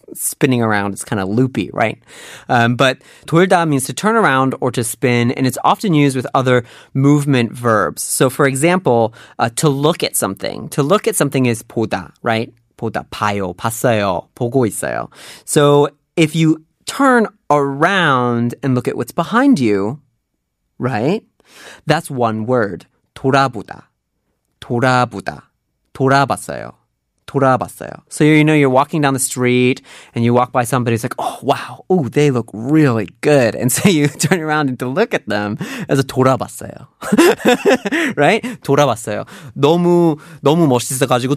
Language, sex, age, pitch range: Korean, male, 30-49, 120-150 Hz